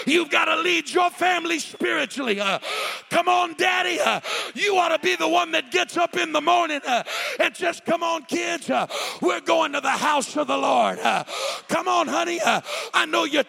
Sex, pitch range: male, 250-345 Hz